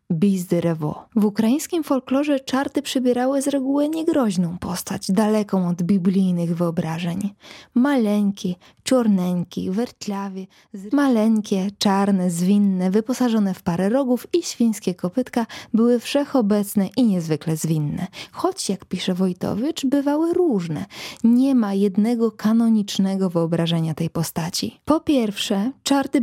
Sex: female